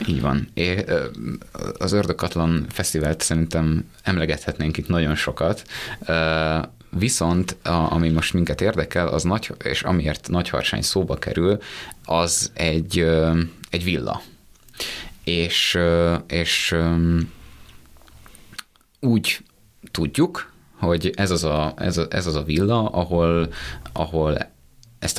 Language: Hungarian